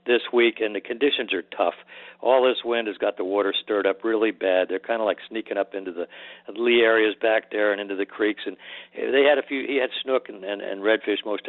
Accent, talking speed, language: American, 245 wpm, English